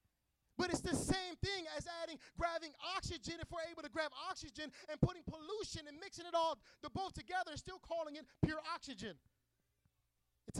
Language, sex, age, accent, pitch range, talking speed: English, male, 20-39, American, 185-290 Hz, 175 wpm